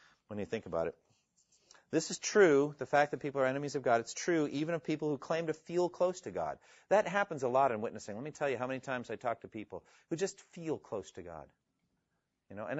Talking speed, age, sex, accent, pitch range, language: 255 wpm, 40-59, male, American, 110-145 Hz, English